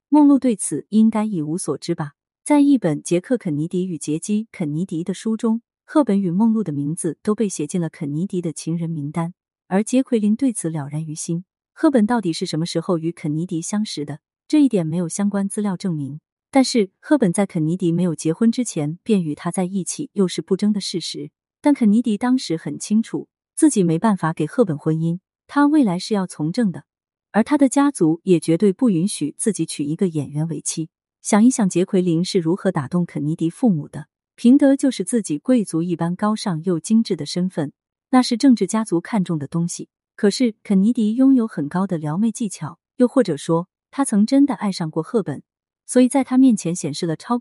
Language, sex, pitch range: Chinese, female, 165-225 Hz